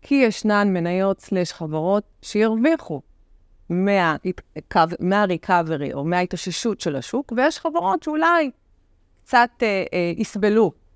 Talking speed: 105 wpm